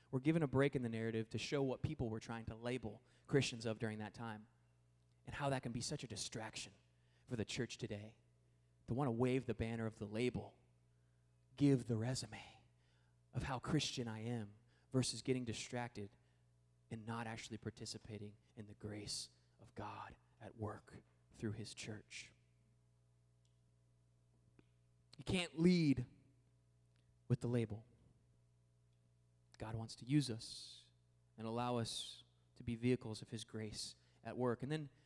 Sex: male